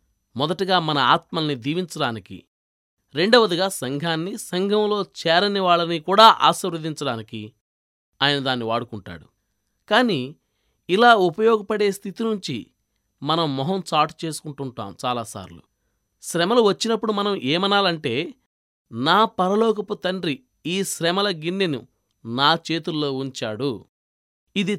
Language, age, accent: Telugu, 20-39, native